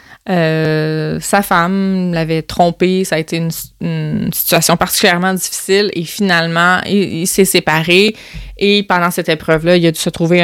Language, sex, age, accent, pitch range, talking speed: French, female, 20-39, Canadian, 170-205 Hz, 160 wpm